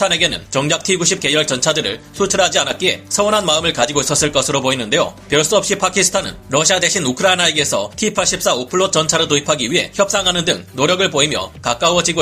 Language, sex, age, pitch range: Korean, male, 30-49, 145-185 Hz